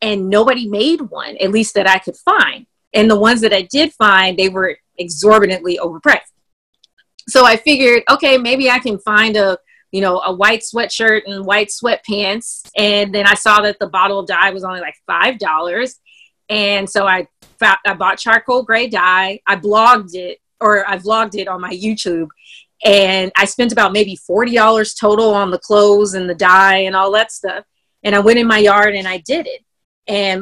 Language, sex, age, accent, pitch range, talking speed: English, female, 20-39, American, 190-225 Hz, 195 wpm